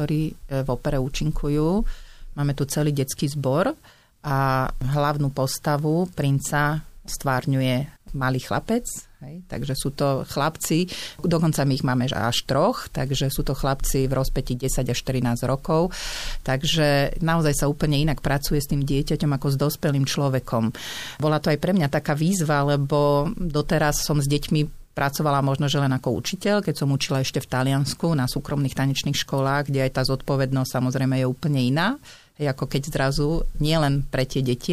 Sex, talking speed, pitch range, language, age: female, 165 wpm, 135-155 Hz, Slovak, 40-59